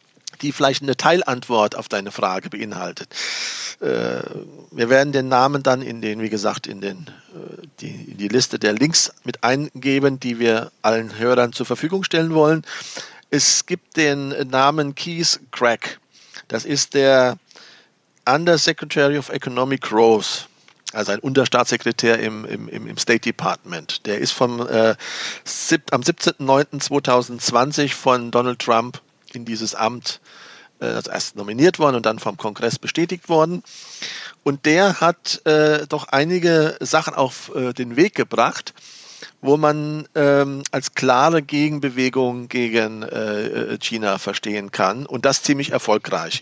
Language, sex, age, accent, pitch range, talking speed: German, male, 40-59, German, 120-150 Hz, 135 wpm